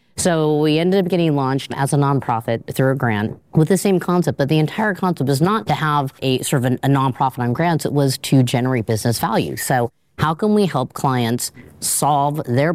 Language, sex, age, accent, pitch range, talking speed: English, female, 30-49, American, 125-160 Hz, 215 wpm